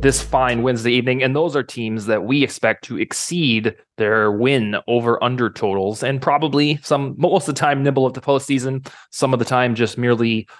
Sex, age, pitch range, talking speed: male, 20-39, 115-140 Hz, 200 wpm